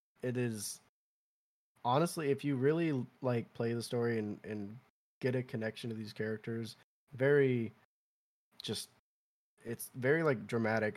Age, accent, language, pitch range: 20-39, American, English, 105-125 Hz